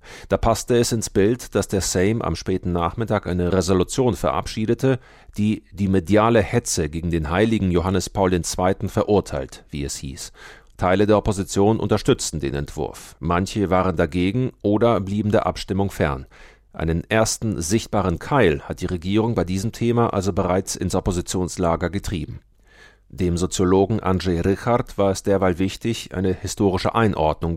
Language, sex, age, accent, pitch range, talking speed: German, male, 40-59, German, 90-110 Hz, 150 wpm